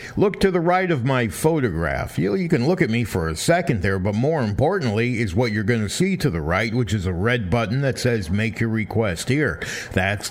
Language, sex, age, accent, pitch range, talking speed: English, male, 50-69, American, 100-145 Hz, 240 wpm